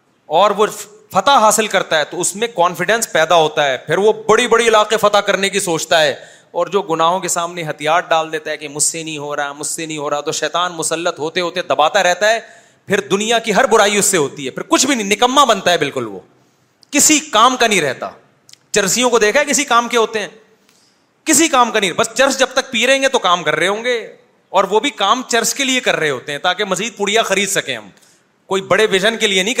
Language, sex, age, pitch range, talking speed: Urdu, male, 30-49, 165-220 Hz, 250 wpm